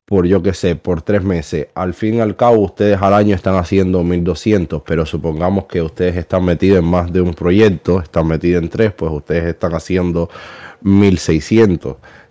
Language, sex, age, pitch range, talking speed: English, male, 20-39, 90-105 Hz, 185 wpm